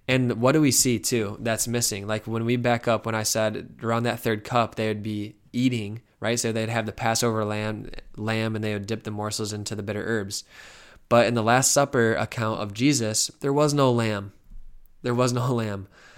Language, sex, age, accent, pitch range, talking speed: English, male, 20-39, American, 110-120 Hz, 215 wpm